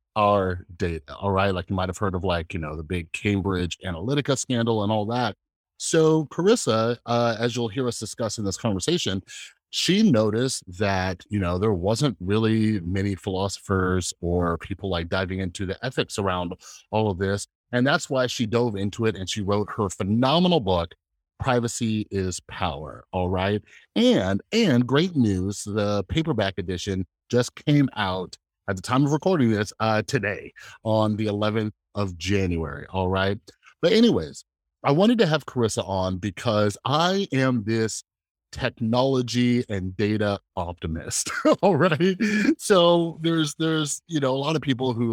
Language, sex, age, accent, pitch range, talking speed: English, male, 30-49, American, 95-130 Hz, 165 wpm